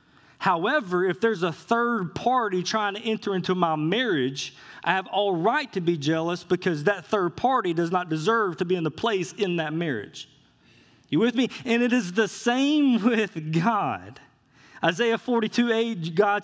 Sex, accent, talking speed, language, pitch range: male, American, 170 wpm, English, 180-230 Hz